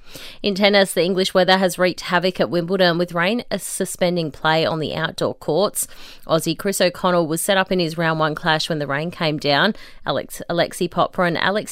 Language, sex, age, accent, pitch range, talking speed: English, female, 30-49, Australian, 160-195 Hz, 200 wpm